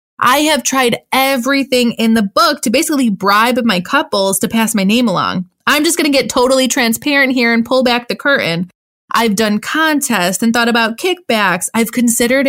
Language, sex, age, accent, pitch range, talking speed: English, female, 20-39, American, 215-290 Hz, 185 wpm